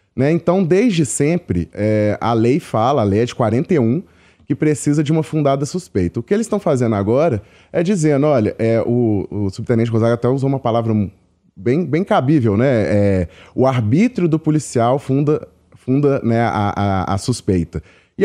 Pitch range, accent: 110-150 Hz, Brazilian